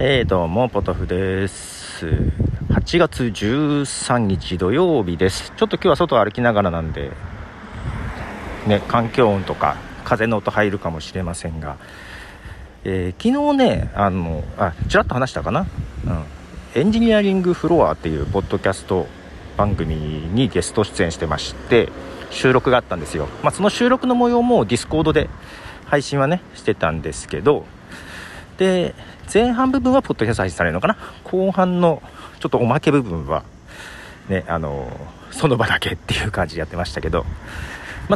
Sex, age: male, 40-59